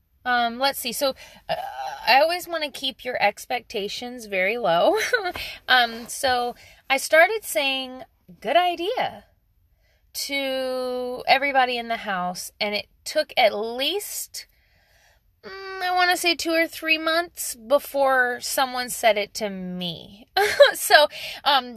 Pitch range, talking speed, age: 200-310 Hz, 130 wpm, 20-39